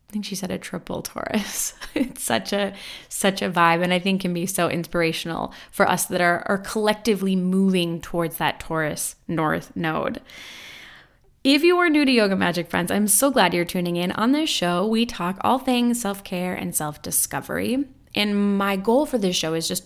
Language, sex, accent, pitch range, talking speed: English, female, American, 170-215 Hz, 195 wpm